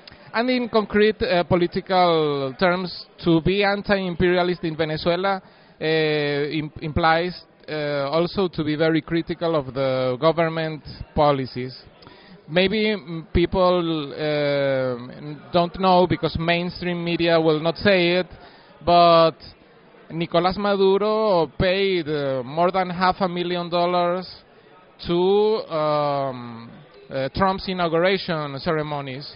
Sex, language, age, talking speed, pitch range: male, English, 30-49, 105 wpm, 150-180 Hz